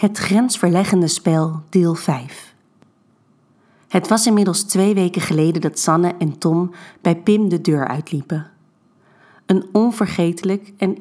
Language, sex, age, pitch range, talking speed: Dutch, female, 40-59, 165-190 Hz, 125 wpm